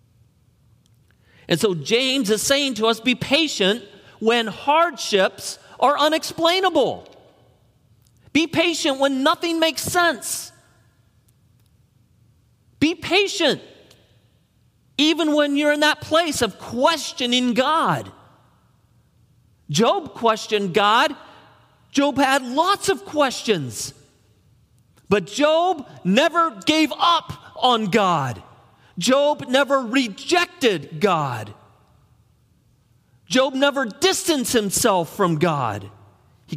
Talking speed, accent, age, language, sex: 90 wpm, American, 40-59, English, male